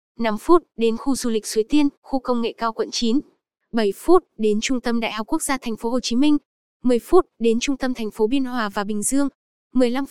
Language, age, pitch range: Vietnamese, 10-29, 225-270 Hz